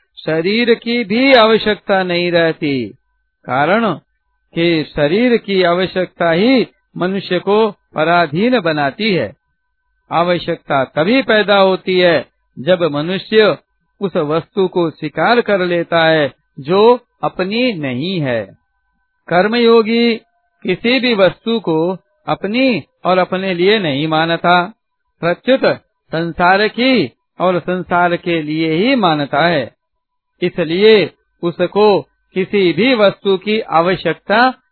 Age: 60-79